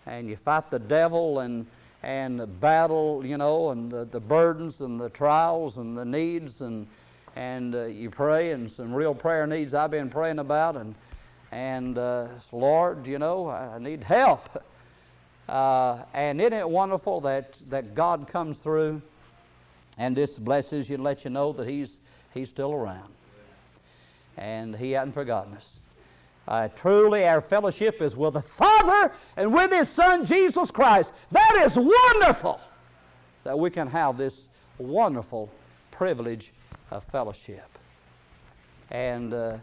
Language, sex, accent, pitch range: English, male, American, 120-155 Hz